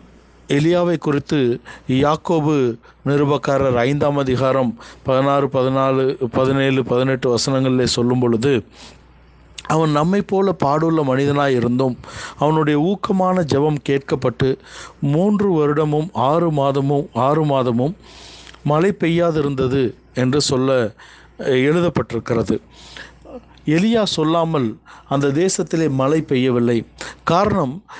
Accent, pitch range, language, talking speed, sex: native, 130-160 Hz, Tamil, 85 wpm, male